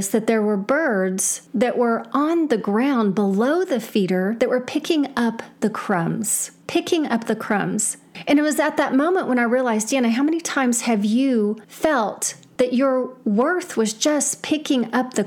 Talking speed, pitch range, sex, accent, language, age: 180 wpm, 205-270 Hz, female, American, English, 40-59